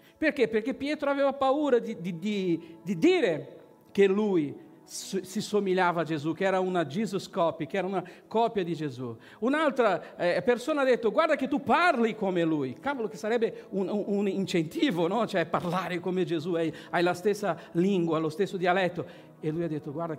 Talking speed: 180 wpm